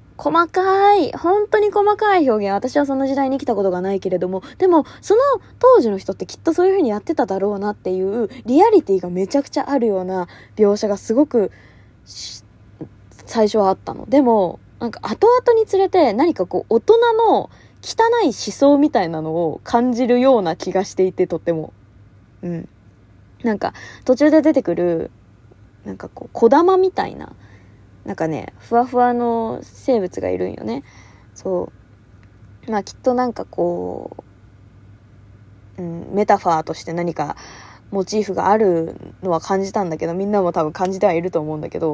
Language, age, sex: Japanese, 20-39, female